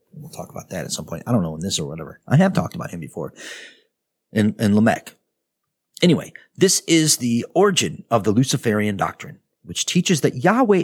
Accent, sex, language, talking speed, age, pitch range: American, male, English, 200 wpm, 50-69, 110-180 Hz